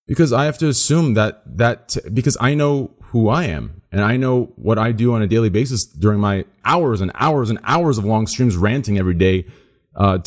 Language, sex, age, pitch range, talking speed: English, male, 30-49, 95-115 Hz, 215 wpm